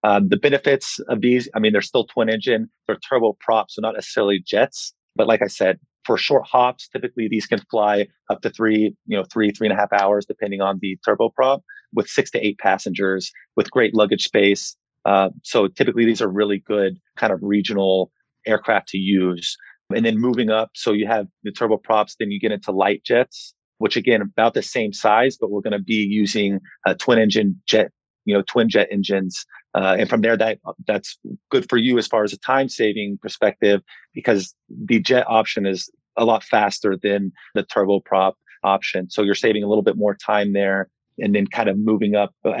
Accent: American